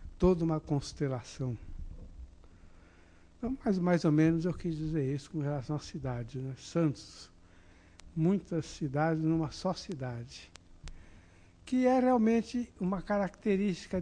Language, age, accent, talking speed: Portuguese, 60-79, Brazilian, 120 wpm